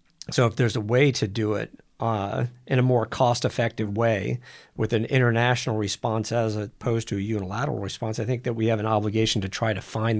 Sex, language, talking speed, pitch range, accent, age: male, English, 205 wpm, 105-125 Hz, American, 50-69